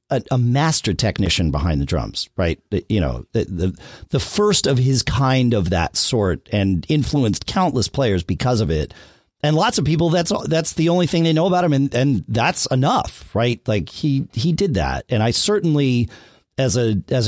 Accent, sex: American, male